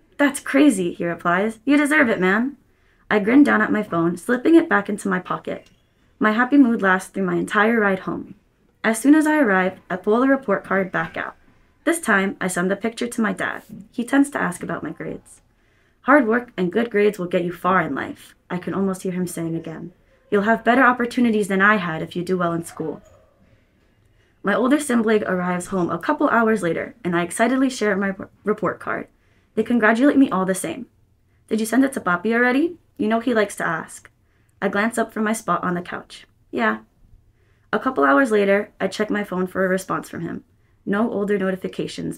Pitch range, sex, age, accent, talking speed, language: 185-240 Hz, female, 20-39, American, 215 wpm, English